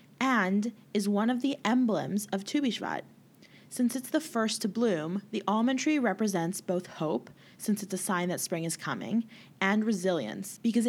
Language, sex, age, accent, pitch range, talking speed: English, female, 20-39, American, 190-235 Hz, 170 wpm